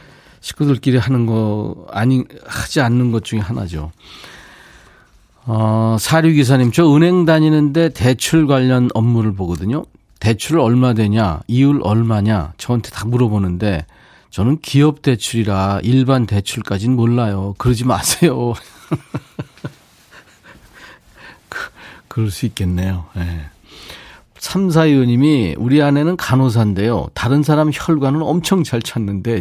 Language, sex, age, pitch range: Korean, male, 40-59, 105-145 Hz